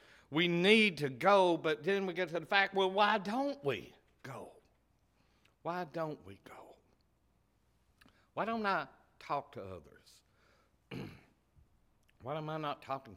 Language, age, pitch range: English, 60-79, 115-165 Hz